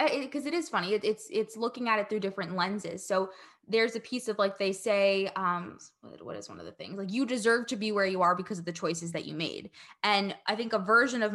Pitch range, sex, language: 190-235 Hz, female, English